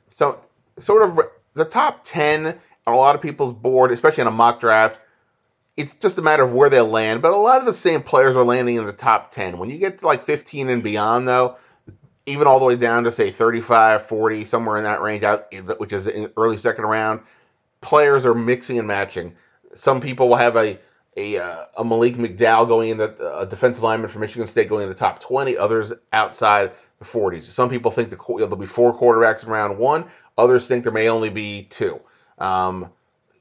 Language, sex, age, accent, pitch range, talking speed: English, male, 30-49, American, 110-125 Hz, 215 wpm